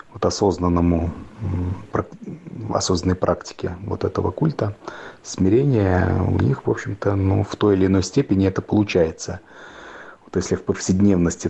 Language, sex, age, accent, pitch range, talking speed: Russian, male, 30-49, native, 90-105 Hz, 125 wpm